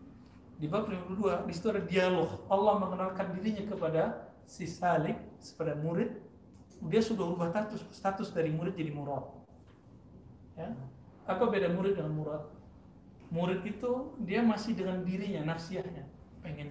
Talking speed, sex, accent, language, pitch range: 135 wpm, male, native, Indonesian, 135-185 Hz